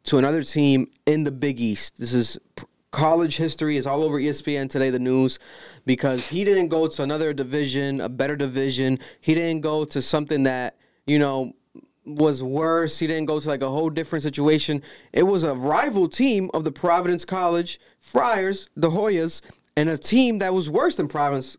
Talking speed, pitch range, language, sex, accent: 185 wpm, 140-180 Hz, English, male, American